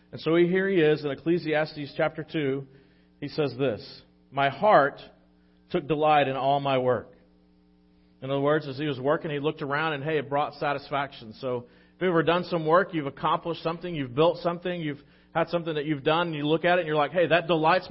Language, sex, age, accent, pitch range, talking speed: English, male, 40-59, American, 115-160 Hz, 220 wpm